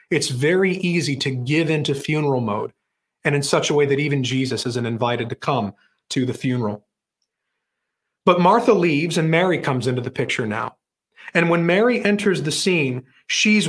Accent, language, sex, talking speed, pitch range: American, English, male, 175 wpm, 145-195 Hz